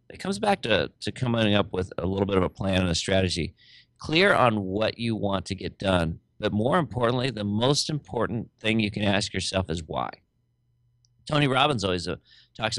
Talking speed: 200 wpm